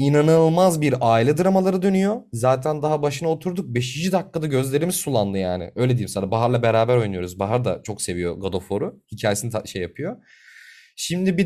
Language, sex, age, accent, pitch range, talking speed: Turkish, male, 30-49, native, 110-145 Hz, 175 wpm